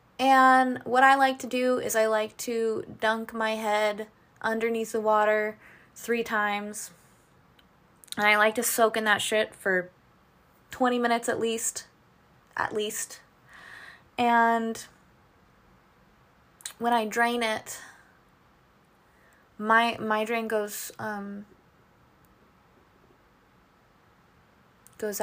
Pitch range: 185-220 Hz